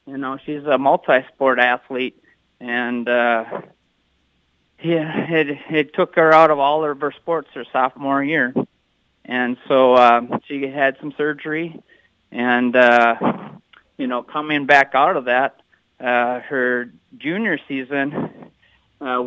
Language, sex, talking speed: English, male, 135 wpm